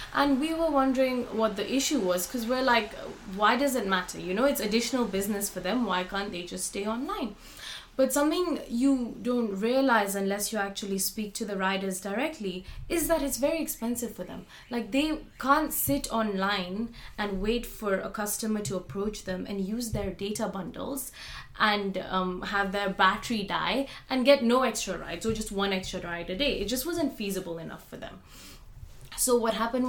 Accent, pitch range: Indian, 190-245 Hz